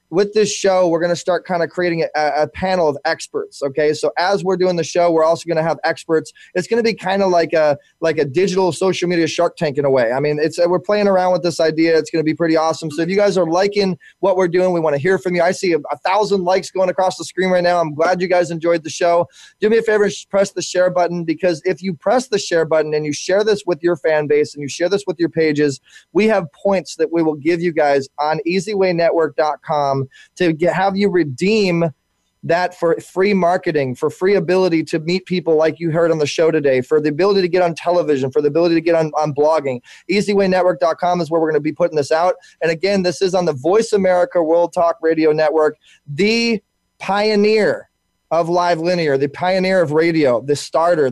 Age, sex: 20-39, male